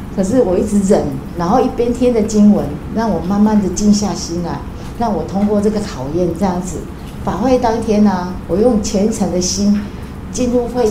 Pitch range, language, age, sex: 185-245 Hz, Chinese, 30-49, female